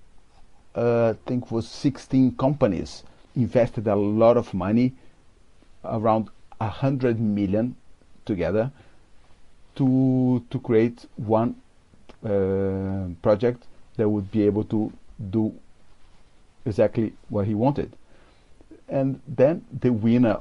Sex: male